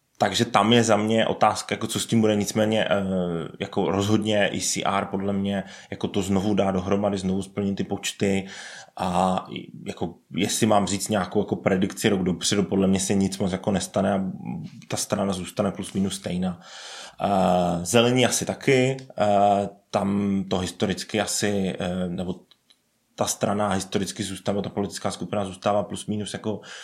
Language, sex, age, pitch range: Czech, male, 20-39, 100-110 Hz